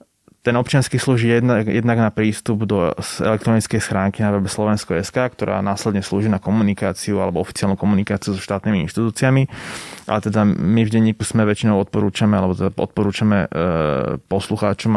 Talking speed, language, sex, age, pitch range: 150 wpm, Slovak, male, 20-39, 100-115 Hz